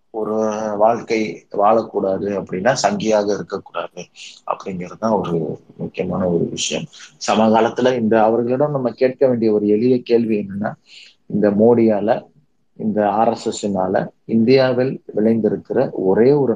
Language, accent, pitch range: Tamil, native, 100-115 Hz